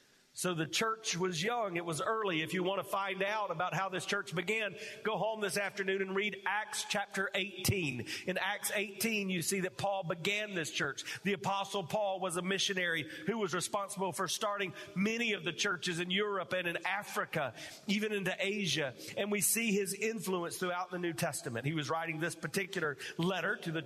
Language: English